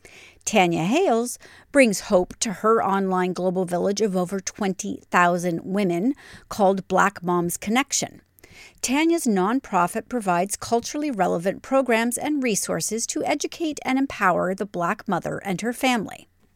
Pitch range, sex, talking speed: 185-265 Hz, female, 125 wpm